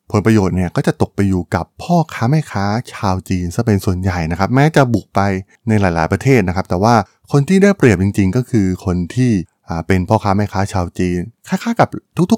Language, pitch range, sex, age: Thai, 95-120 Hz, male, 20-39